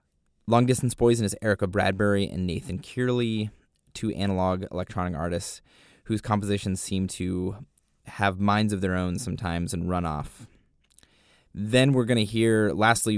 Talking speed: 145 wpm